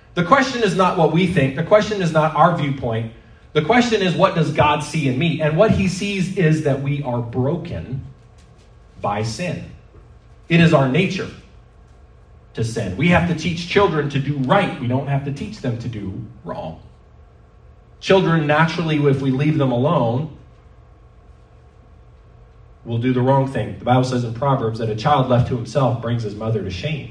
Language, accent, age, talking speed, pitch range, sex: English, American, 30-49, 185 wpm, 125-165 Hz, male